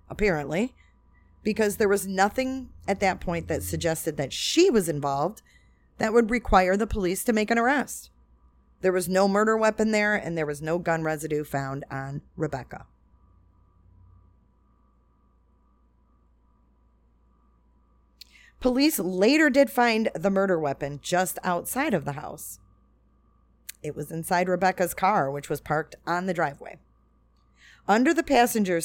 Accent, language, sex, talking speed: American, English, female, 135 wpm